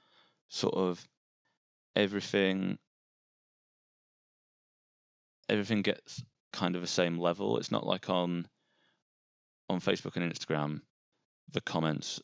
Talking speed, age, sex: 100 wpm, 20-39, male